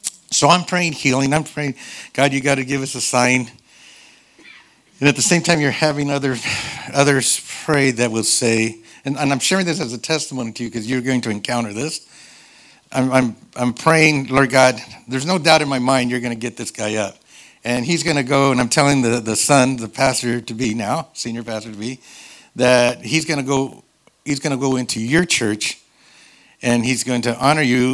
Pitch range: 120-140 Hz